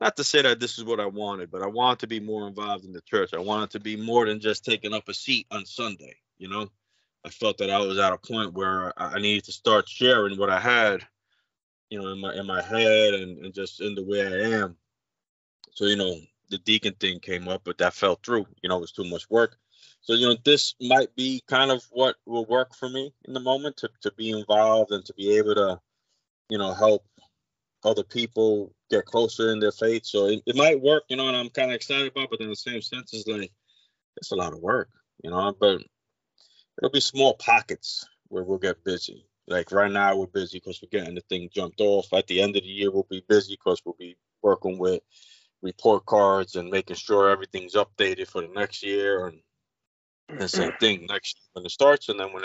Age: 30-49